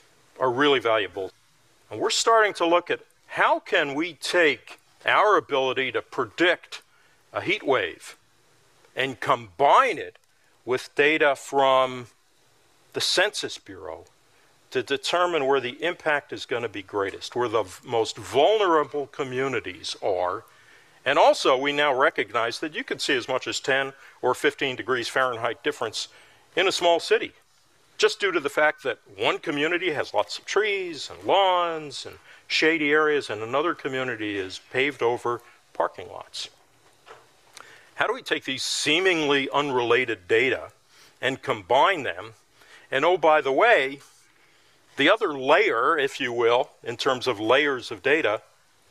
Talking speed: 145 wpm